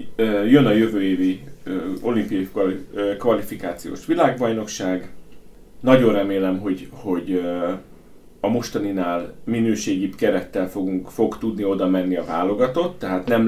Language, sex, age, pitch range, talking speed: Hungarian, male, 30-49, 95-115 Hz, 105 wpm